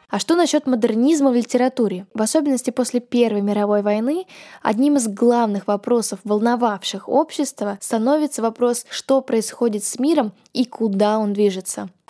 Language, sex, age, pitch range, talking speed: Russian, female, 10-29, 210-260 Hz, 145 wpm